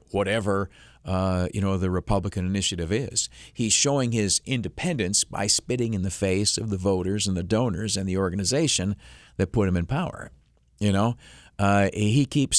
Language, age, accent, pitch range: English, 50-69, American, 100-125 Hz